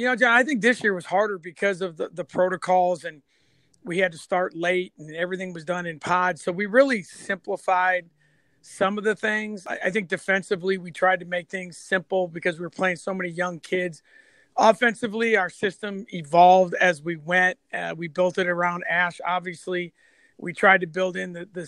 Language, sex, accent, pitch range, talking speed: English, male, American, 180-200 Hz, 200 wpm